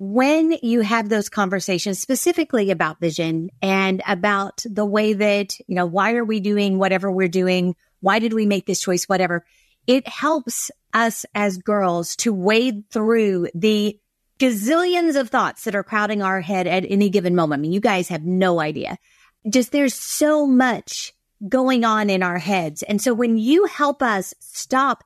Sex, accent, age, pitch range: female, American, 30-49, 190-250 Hz